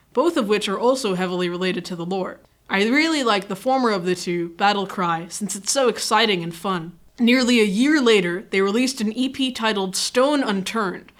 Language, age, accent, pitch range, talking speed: English, 20-39, American, 190-240 Hz, 200 wpm